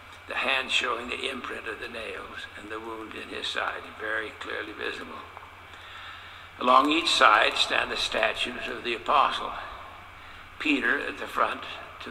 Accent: American